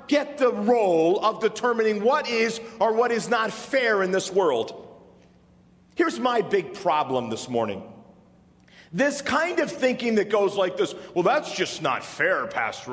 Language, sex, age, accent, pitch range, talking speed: English, male, 40-59, American, 215-295 Hz, 160 wpm